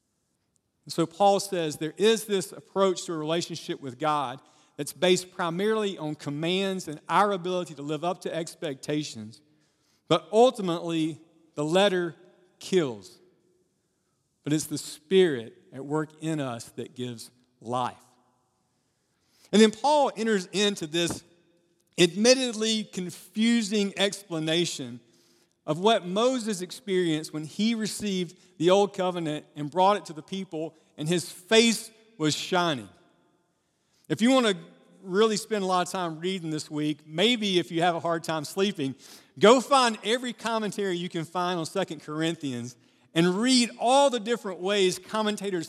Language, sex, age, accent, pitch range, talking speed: English, male, 40-59, American, 155-200 Hz, 145 wpm